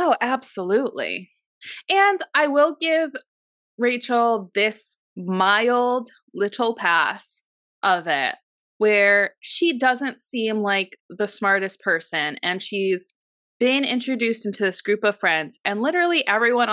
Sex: female